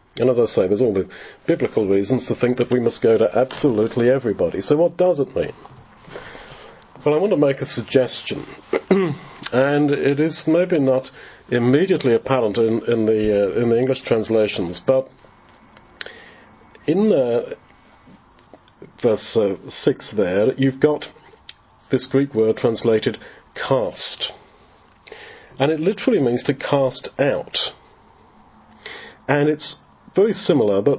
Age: 40-59